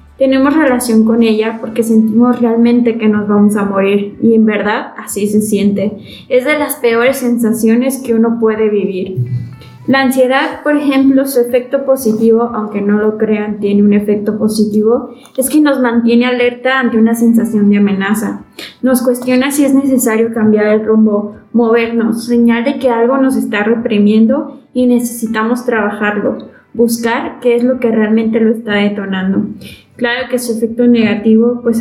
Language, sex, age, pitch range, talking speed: Spanish, female, 20-39, 215-245 Hz, 160 wpm